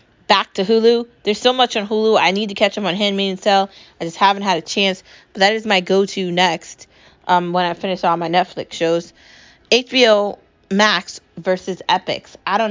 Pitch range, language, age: 170-200 Hz, English, 20-39